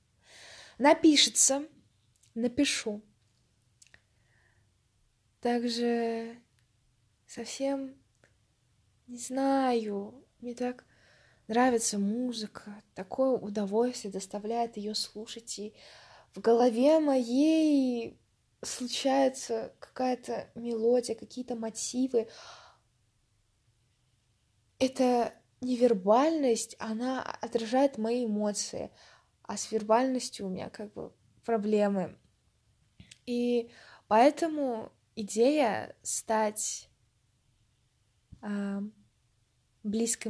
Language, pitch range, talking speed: Russian, 195-250 Hz, 65 wpm